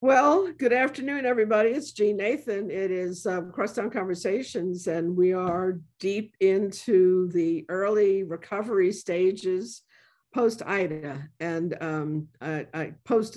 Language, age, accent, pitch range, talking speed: English, 60-79, American, 170-210 Hz, 110 wpm